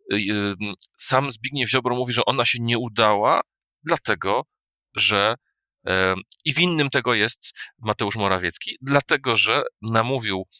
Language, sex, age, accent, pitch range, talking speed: Polish, male, 30-49, native, 95-120 Hz, 115 wpm